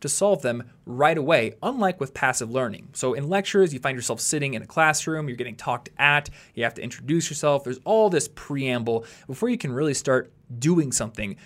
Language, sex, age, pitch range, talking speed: English, male, 20-39, 120-155 Hz, 205 wpm